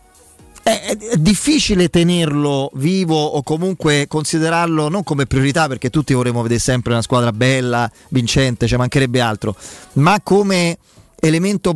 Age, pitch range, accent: 30-49, 125-160 Hz, native